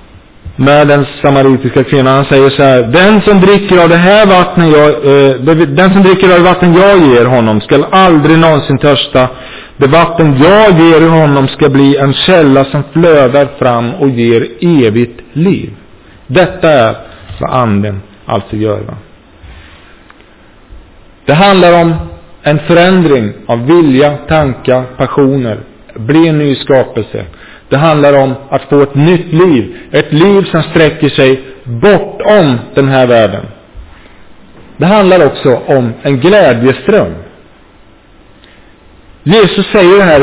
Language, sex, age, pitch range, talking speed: Swedish, male, 50-69, 130-190 Hz, 130 wpm